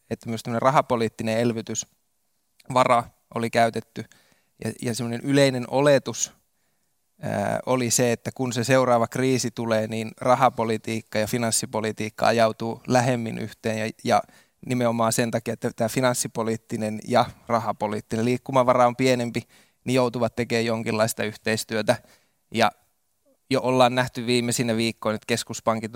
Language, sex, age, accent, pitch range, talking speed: Finnish, male, 20-39, native, 115-125 Hz, 125 wpm